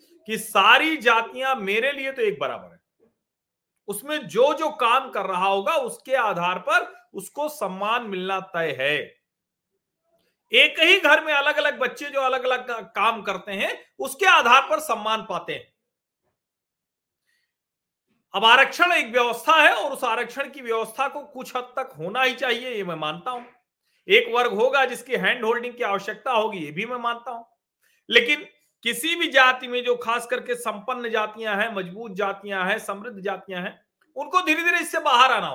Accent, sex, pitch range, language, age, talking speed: native, male, 215-310 Hz, Hindi, 40-59, 170 wpm